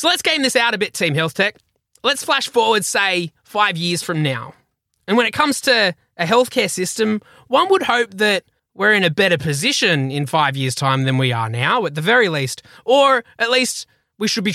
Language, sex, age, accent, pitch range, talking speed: English, male, 20-39, Australian, 155-225 Hz, 220 wpm